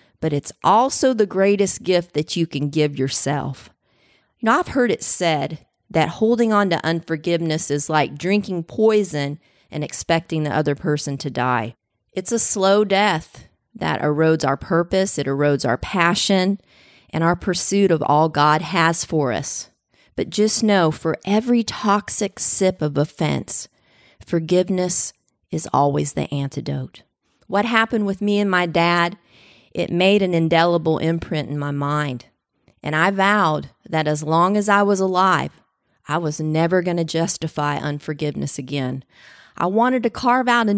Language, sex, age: English, female, 40-59